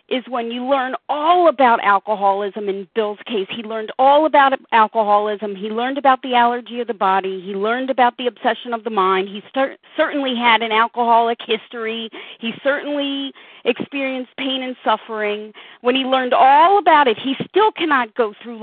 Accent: American